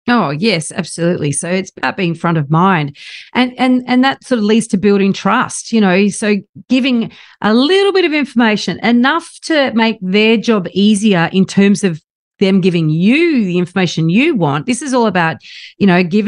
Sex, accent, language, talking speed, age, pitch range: female, Australian, English, 190 wpm, 40-59, 180-235 Hz